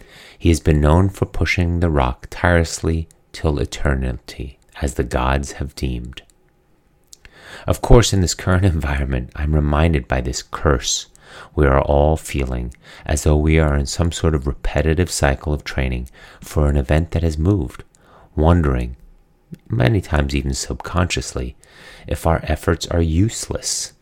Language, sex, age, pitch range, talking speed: English, male, 30-49, 70-85 Hz, 145 wpm